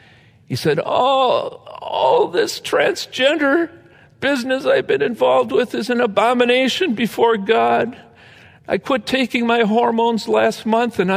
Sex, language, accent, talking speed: male, English, American, 130 wpm